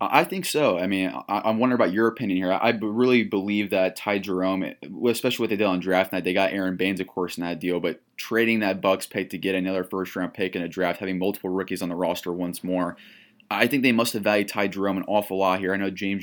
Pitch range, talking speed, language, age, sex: 90-105 Hz, 265 wpm, English, 20-39, male